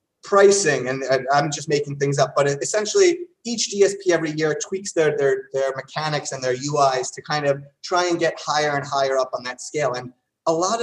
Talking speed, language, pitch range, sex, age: 210 wpm, English, 140-190 Hz, male, 30-49